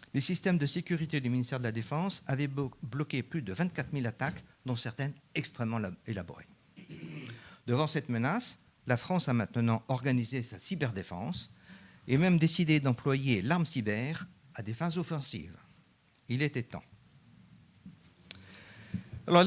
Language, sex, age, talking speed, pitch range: French, male, 50-69, 135 wpm, 110-155 Hz